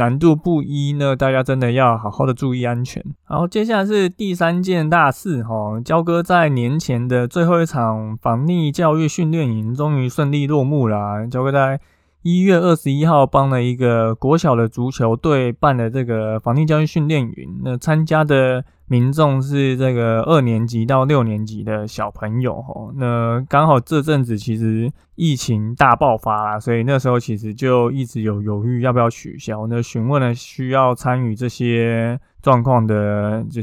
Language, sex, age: Chinese, male, 20-39